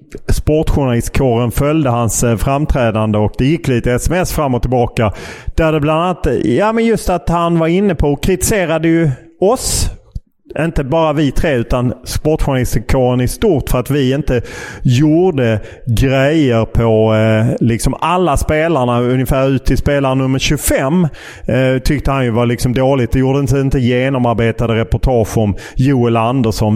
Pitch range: 115-140 Hz